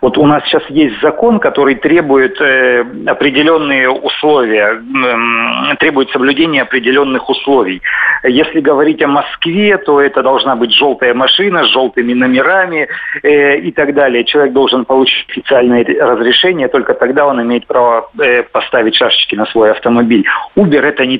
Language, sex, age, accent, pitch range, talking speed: Russian, male, 40-59, native, 120-150 Hz, 145 wpm